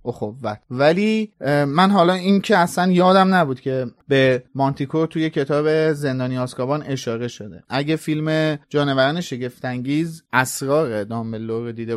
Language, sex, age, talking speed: Persian, male, 30-49, 130 wpm